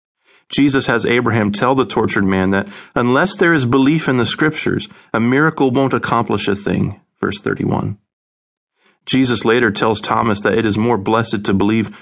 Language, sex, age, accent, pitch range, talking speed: English, male, 40-59, American, 100-135 Hz, 170 wpm